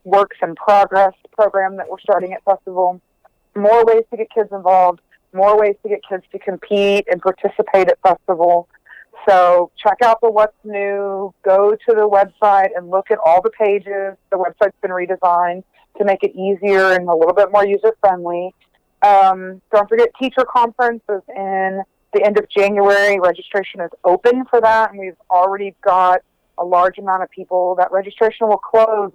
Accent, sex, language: American, female, English